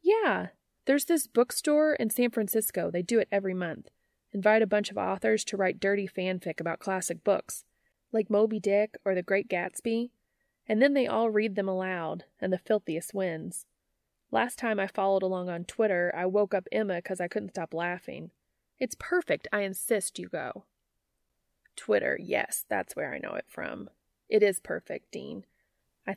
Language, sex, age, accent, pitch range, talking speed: English, female, 30-49, American, 165-215 Hz, 175 wpm